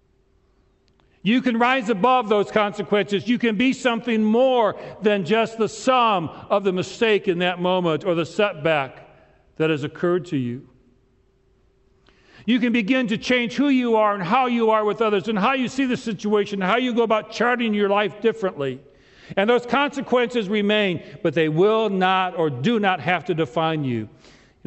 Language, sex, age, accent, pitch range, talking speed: English, male, 50-69, American, 135-210 Hz, 180 wpm